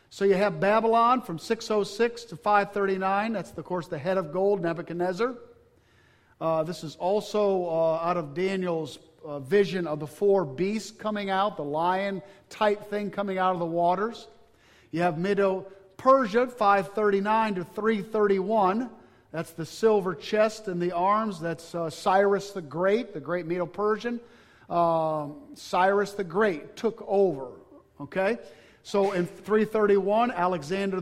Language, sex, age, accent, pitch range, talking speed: English, male, 50-69, American, 165-205 Hz, 140 wpm